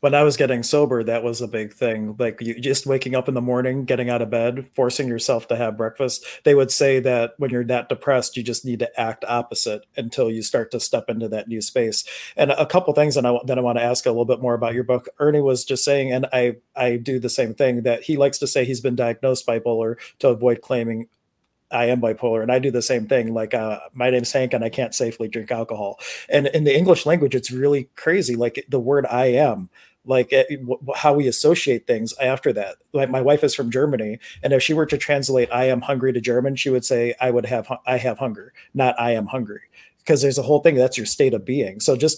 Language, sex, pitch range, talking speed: English, male, 120-135 Hz, 250 wpm